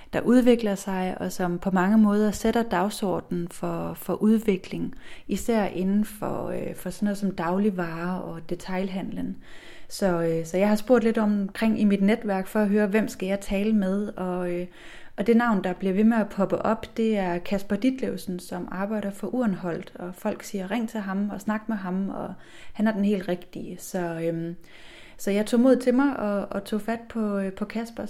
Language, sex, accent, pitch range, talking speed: Danish, female, native, 185-220 Hz, 190 wpm